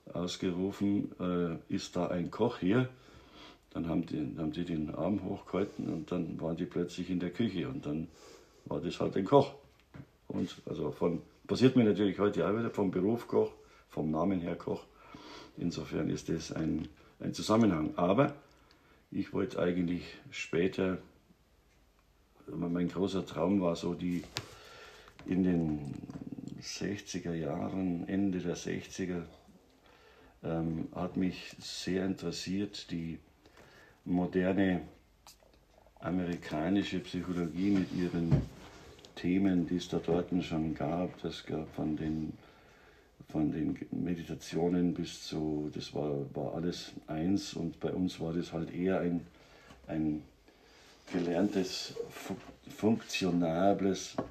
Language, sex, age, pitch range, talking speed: German, male, 50-69, 85-95 Hz, 125 wpm